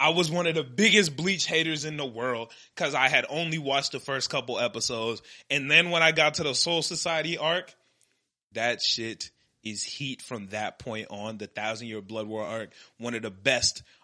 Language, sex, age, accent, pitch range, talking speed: English, male, 20-39, American, 120-165 Hz, 205 wpm